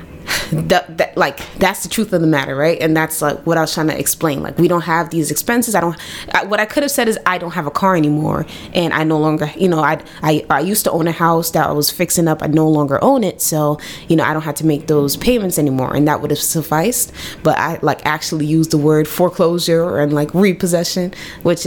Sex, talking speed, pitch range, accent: female, 245 wpm, 150-195 Hz, American